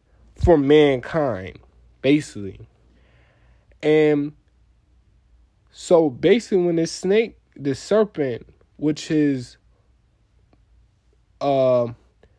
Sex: male